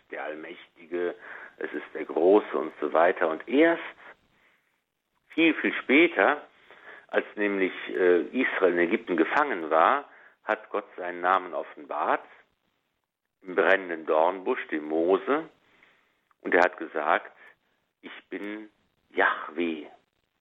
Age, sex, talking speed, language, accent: 60-79, male, 110 wpm, German, German